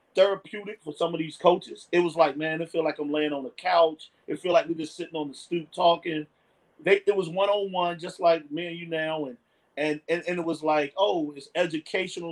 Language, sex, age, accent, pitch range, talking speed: English, male, 30-49, American, 150-190 Hz, 235 wpm